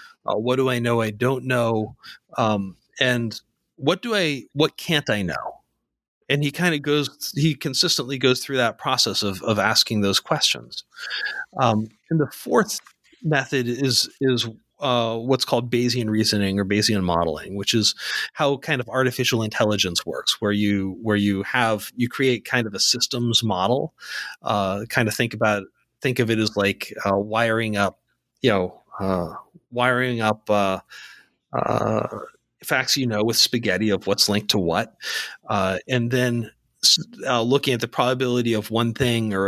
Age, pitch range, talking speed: 30-49, 105-130 Hz, 165 wpm